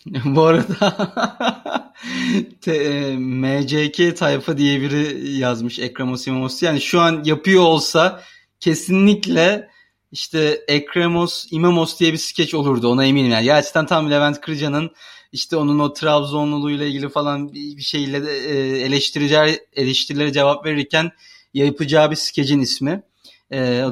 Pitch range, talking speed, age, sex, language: 130-170 Hz, 130 wpm, 30-49, male, Turkish